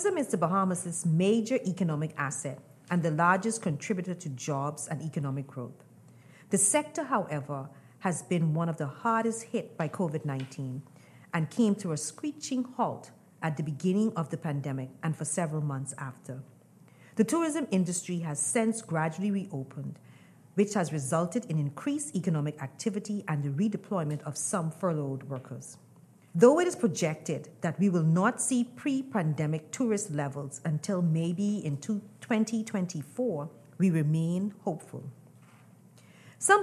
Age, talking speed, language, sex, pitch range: 40-59, 140 wpm, English, female, 150-205 Hz